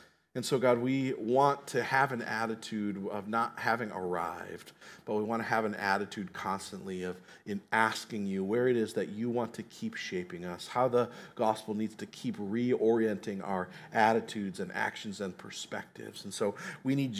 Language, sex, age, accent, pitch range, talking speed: English, male, 40-59, American, 110-150 Hz, 180 wpm